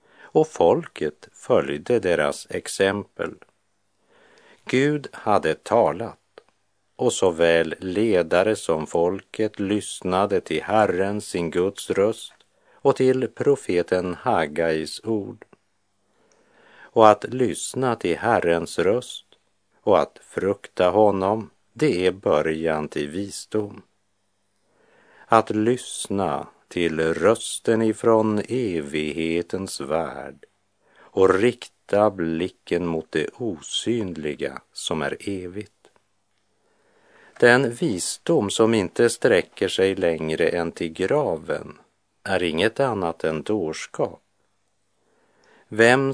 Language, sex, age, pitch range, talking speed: Swedish, male, 50-69, 85-110 Hz, 90 wpm